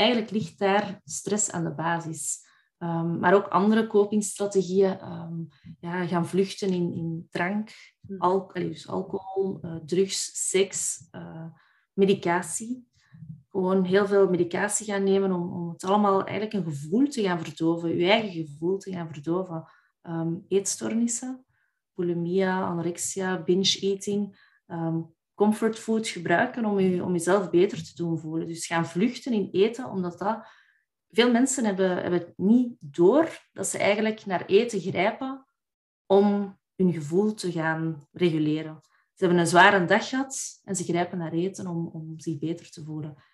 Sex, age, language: female, 30-49, Dutch